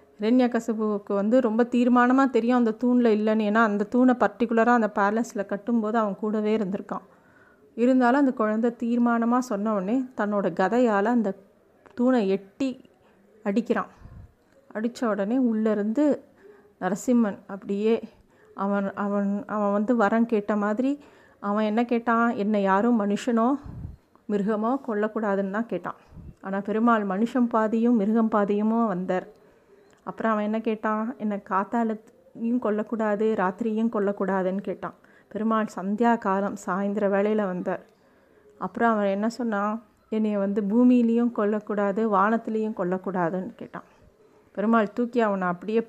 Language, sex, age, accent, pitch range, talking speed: Tamil, female, 30-49, native, 200-235 Hz, 120 wpm